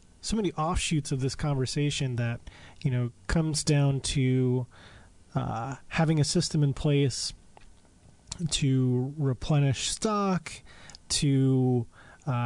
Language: English